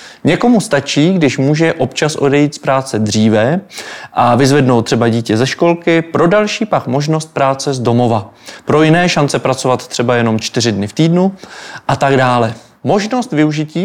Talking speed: 160 wpm